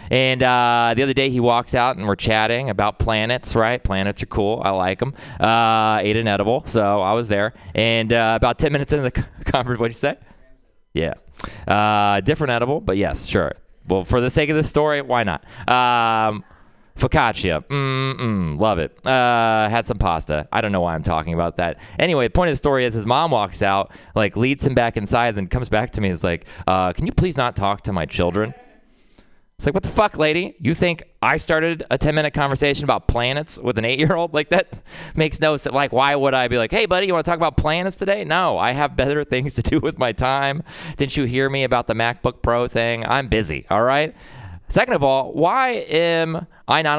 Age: 20-39